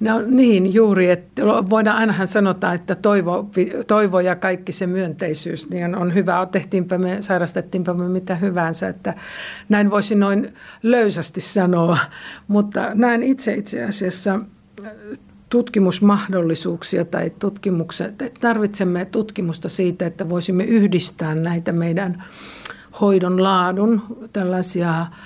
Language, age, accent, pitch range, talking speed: Finnish, 60-79, native, 175-205 Hz, 115 wpm